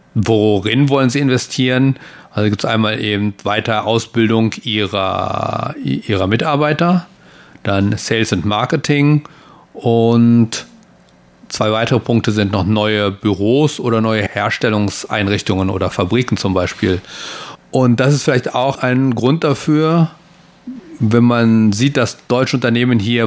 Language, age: German, 40-59